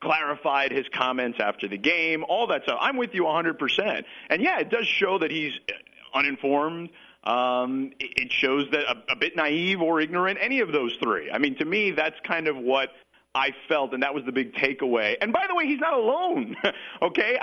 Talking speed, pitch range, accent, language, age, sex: 205 wpm, 135-210 Hz, American, English, 40-59, male